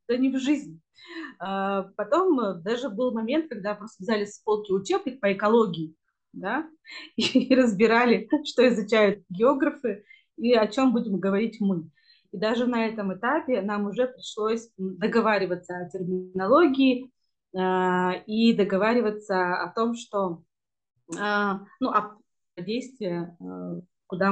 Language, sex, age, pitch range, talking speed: Russian, female, 30-49, 190-245 Hz, 120 wpm